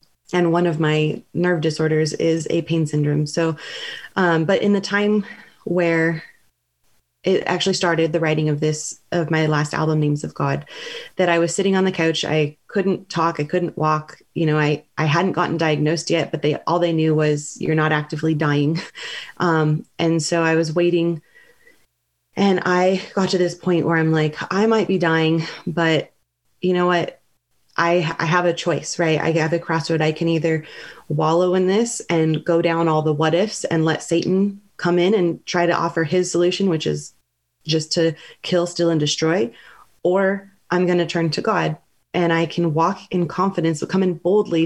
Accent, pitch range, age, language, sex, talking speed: American, 160-180 Hz, 30-49, English, female, 195 wpm